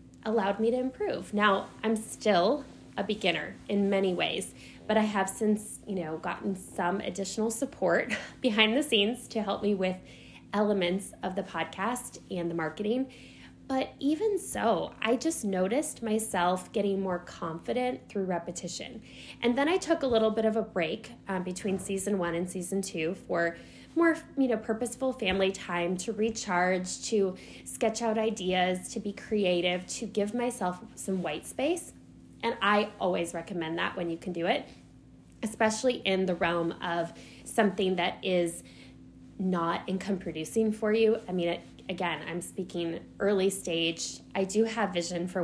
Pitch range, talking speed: 175-220 Hz, 160 wpm